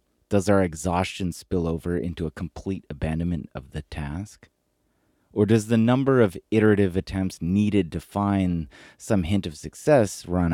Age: 30-49